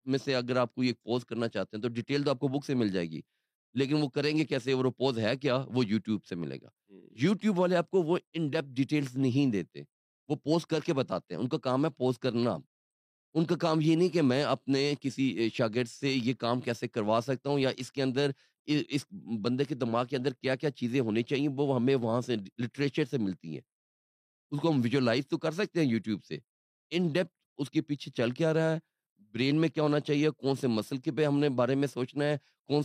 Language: Urdu